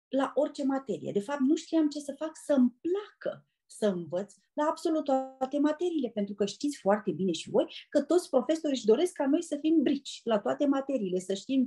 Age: 30-49